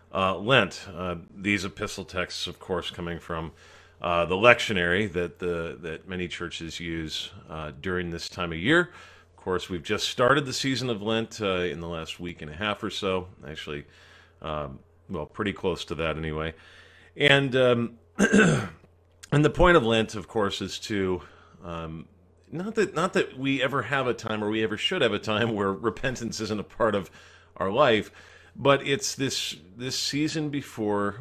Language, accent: English, American